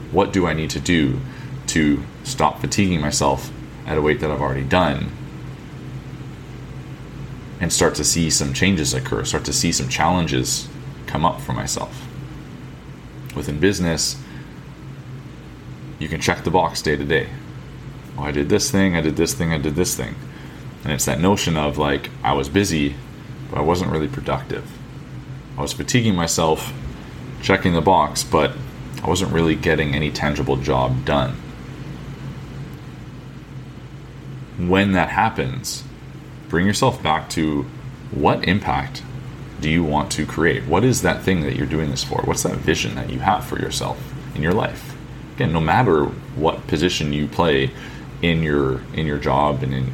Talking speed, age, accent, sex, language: 160 wpm, 30-49, American, male, English